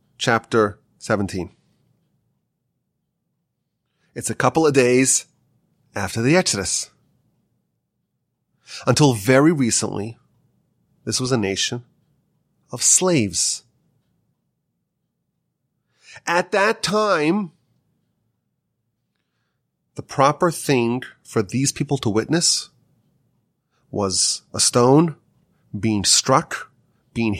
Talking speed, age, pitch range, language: 80 wpm, 30-49, 125-185 Hz, English